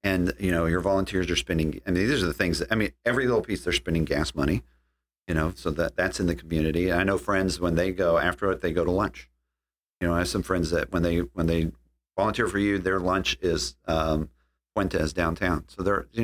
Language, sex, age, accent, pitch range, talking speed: English, male, 40-59, American, 80-110 Hz, 250 wpm